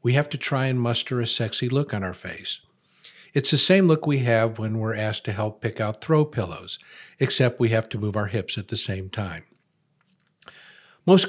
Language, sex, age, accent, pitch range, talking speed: English, male, 50-69, American, 110-140 Hz, 205 wpm